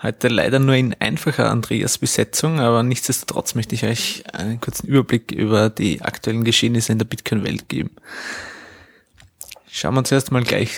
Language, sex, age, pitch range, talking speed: German, male, 20-39, 115-140 Hz, 155 wpm